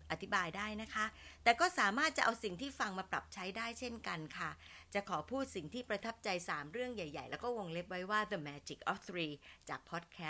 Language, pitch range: Thai, 170-235 Hz